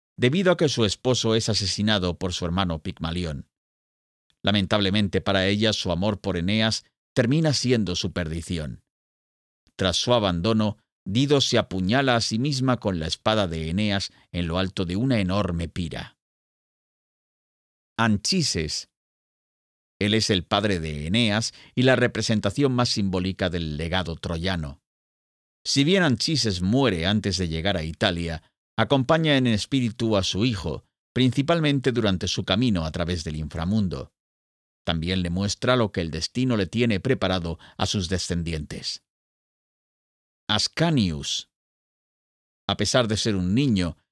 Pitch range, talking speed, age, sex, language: 85-115 Hz, 135 wpm, 50-69, male, Spanish